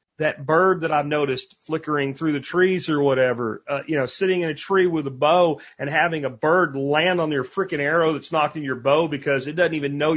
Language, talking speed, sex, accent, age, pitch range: English, 235 wpm, male, American, 40-59, 150-215 Hz